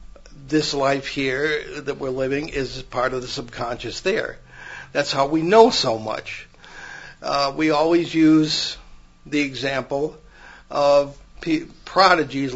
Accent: American